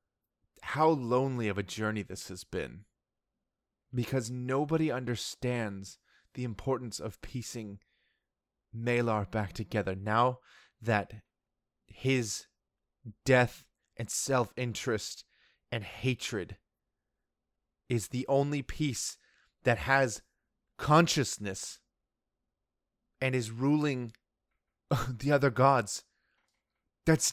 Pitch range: 110-135 Hz